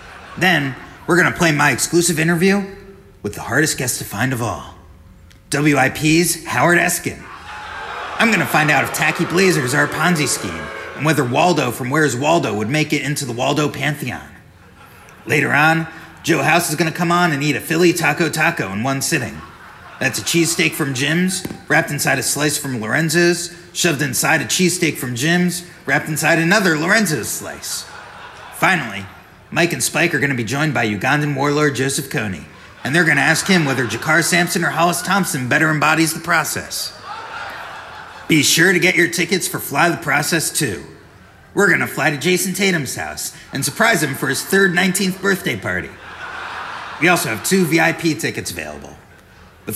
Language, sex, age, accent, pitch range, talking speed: English, male, 30-49, American, 135-170 Hz, 175 wpm